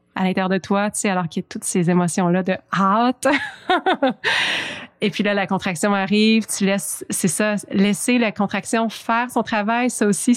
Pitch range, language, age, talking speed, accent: 195-230 Hz, French, 30-49, 195 wpm, Canadian